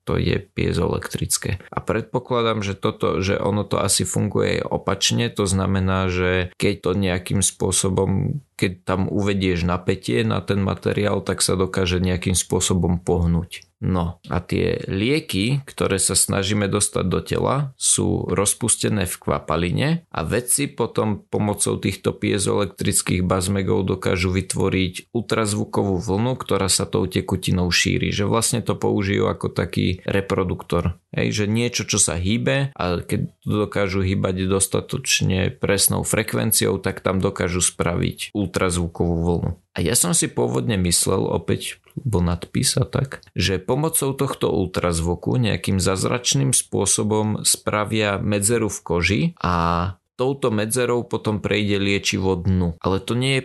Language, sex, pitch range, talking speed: Slovak, male, 90-115 Hz, 135 wpm